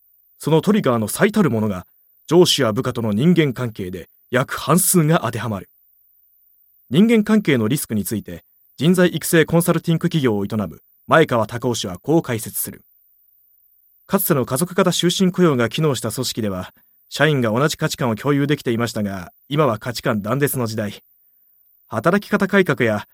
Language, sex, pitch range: Japanese, male, 110-155 Hz